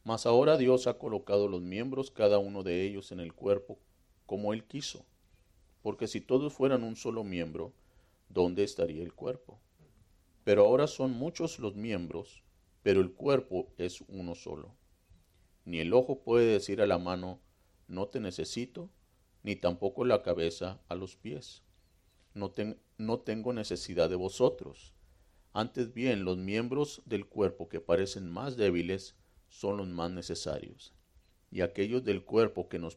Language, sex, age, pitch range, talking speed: Spanish, male, 40-59, 90-115 Hz, 155 wpm